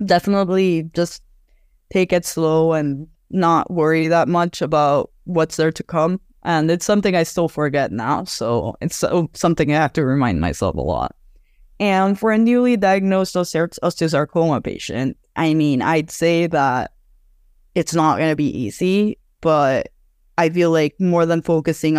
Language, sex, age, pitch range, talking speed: English, female, 10-29, 140-170 Hz, 155 wpm